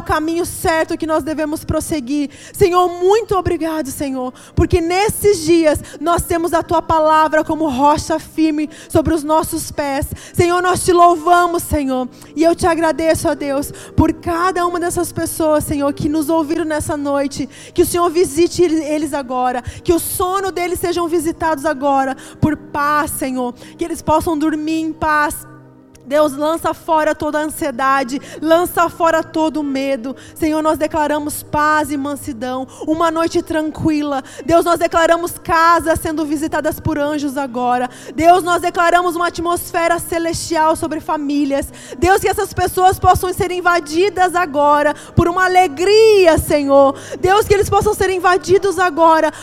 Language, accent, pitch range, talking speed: Portuguese, Brazilian, 300-350 Hz, 155 wpm